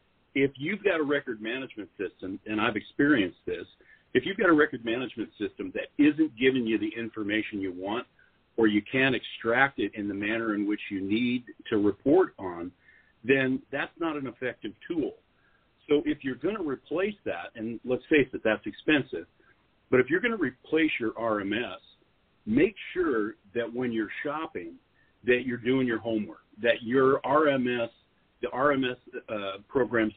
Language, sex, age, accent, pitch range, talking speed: English, male, 50-69, American, 110-145 Hz, 170 wpm